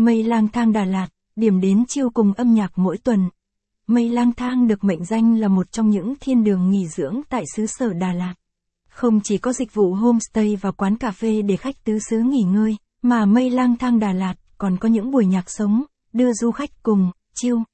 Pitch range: 200-235 Hz